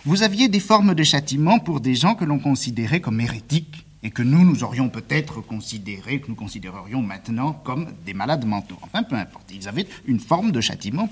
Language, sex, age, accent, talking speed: French, male, 50-69, French, 205 wpm